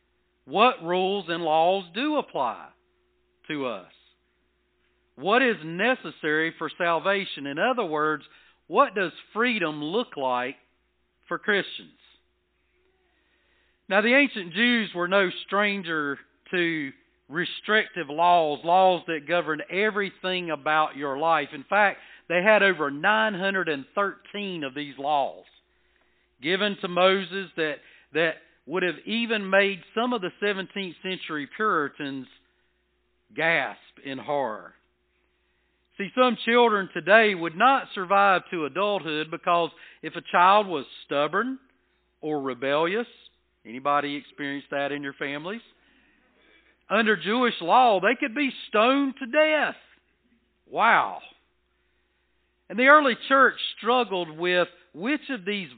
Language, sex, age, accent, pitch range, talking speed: English, male, 40-59, American, 145-205 Hz, 115 wpm